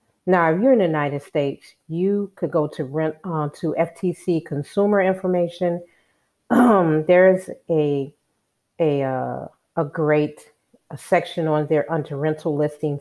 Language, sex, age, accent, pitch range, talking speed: English, female, 40-59, American, 145-170 Hz, 145 wpm